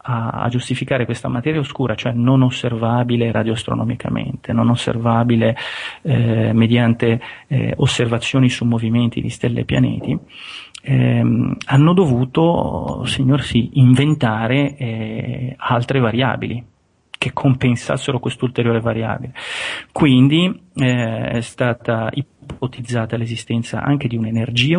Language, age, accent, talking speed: Italian, 30-49, native, 105 wpm